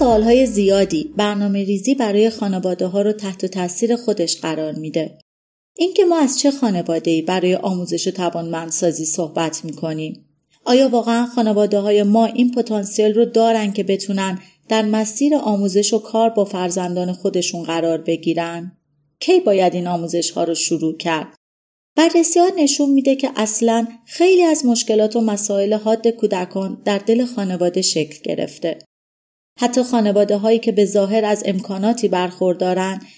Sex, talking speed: female, 145 wpm